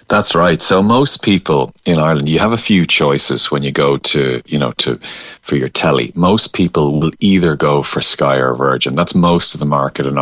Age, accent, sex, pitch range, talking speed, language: 30-49, Irish, male, 70-85 Hz, 215 wpm, English